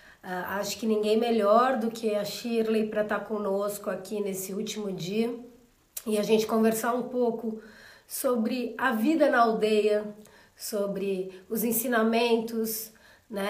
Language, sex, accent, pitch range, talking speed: Portuguese, female, Brazilian, 195-225 Hz, 135 wpm